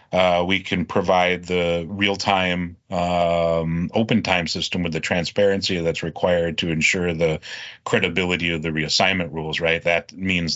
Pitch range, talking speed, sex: 85-110 Hz, 150 wpm, male